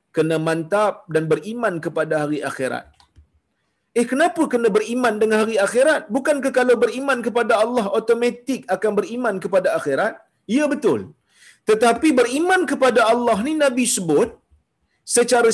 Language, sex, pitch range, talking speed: Malayalam, male, 210-270 Hz, 135 wpm